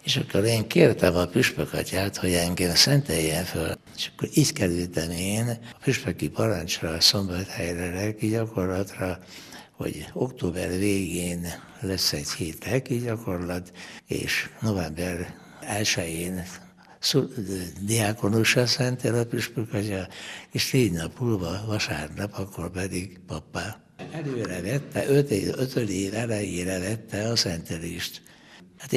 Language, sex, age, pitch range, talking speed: Hungarian, male, 60-79, 95-115 Hz, 120 wpm